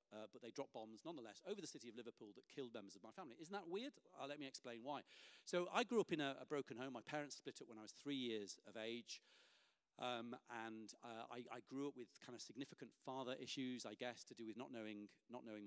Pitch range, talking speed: 115-150 Hz, 255 wpm